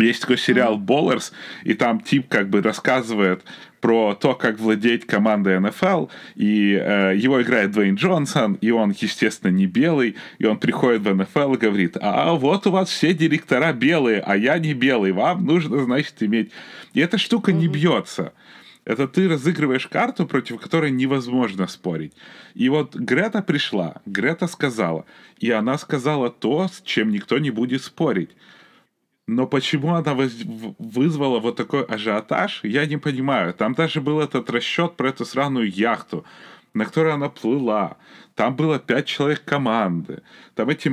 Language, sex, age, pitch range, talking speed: Ukrainian, male, 30-49, 115-150 Hz, 160 wpm